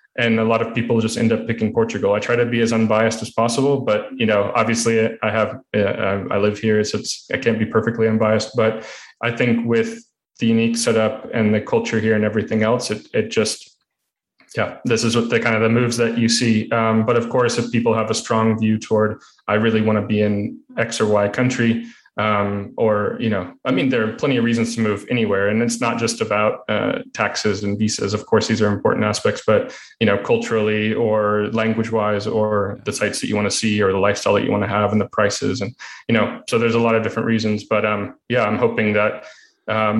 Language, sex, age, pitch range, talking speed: English, male, 30-49, 105-115 Hz, 235 wpm